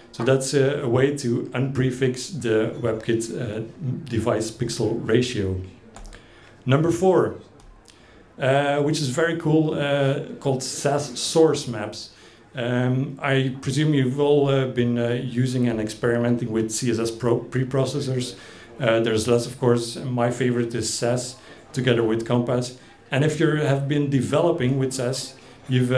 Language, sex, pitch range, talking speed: English, male, 115-135 Hz, 140 wpm